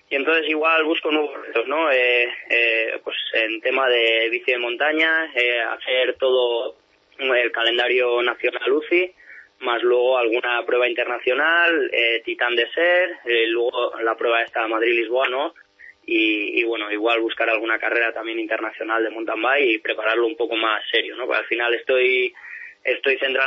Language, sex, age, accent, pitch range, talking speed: Spanish, male, 20-39, Spanish, 115-175 Hz, 155 wpm